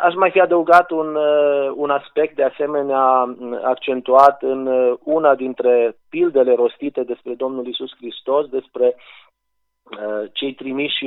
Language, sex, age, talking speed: Romanian, male, 30-49, 125 wpm